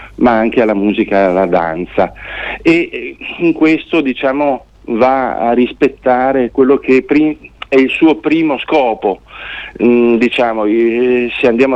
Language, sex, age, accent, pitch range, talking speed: Italian, male, 40-59, native, 110-140 Hz, 130 wpm